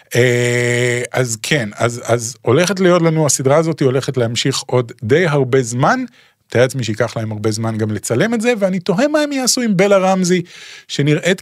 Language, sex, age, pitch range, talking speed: Hebrew, male, 30-49, 130-180 Hz, 185 wpm